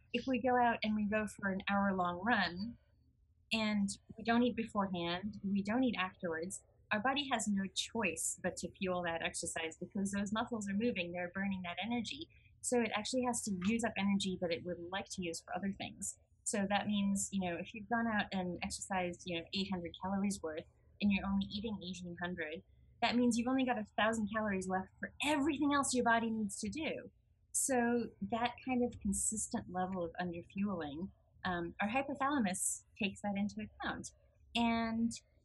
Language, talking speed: English, 190 wpm